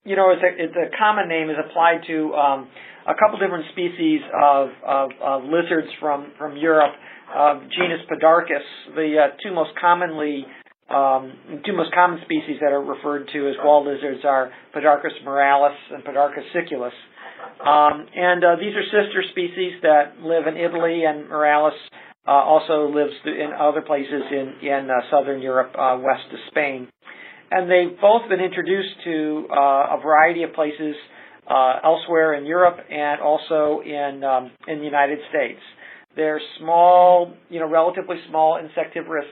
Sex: male